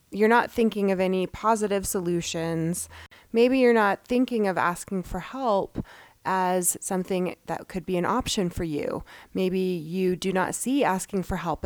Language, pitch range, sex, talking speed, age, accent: English, 170-220 Hz, female, 165 wpm, 20-39, American